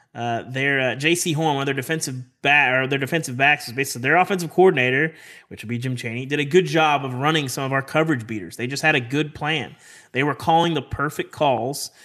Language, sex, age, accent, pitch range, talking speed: English, male, 30-49, American, 125-160 Hz, 230 wpm